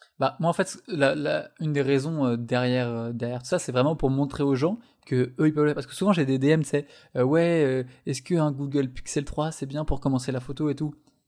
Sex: male